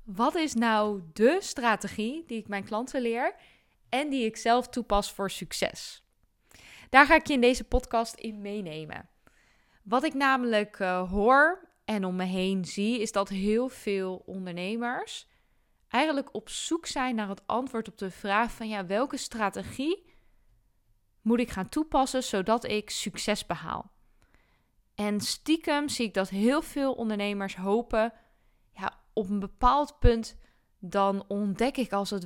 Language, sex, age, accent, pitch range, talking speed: Dutch, female, 10-29, Dutch, 200-255 Hz, 150 wpm